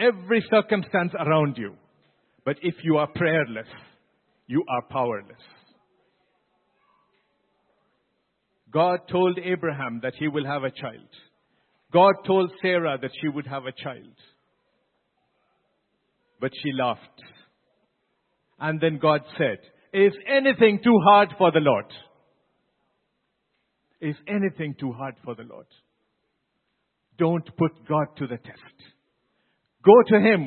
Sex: male